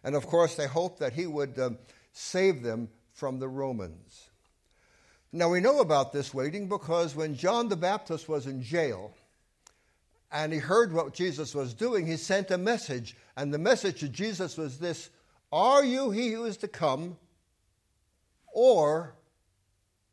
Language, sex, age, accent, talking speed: English, male, 60-79, American, 160 wpm